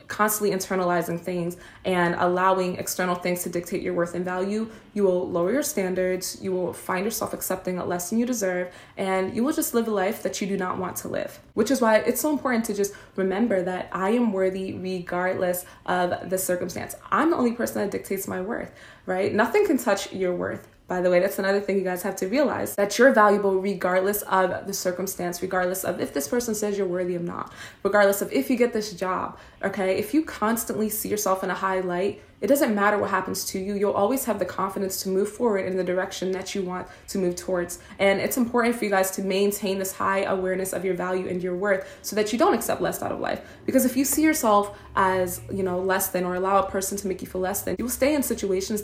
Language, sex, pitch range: English, female, 185-210 Hz